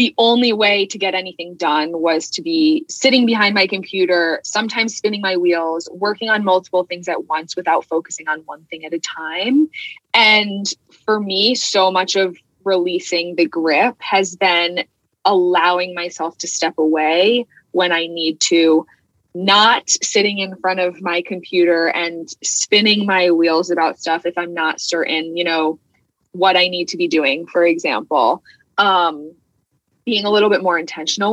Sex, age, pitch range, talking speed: female, 20-39, 165-200 Hz, 165 wpm